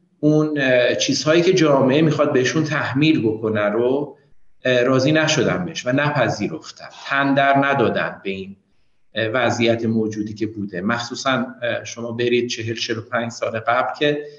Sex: male